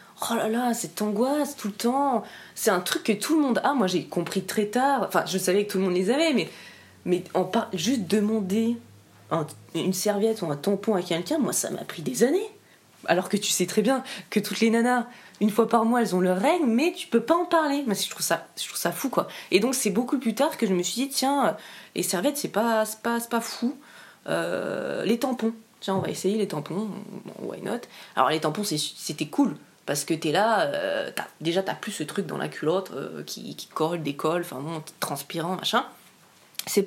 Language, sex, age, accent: French, female, 20-39, French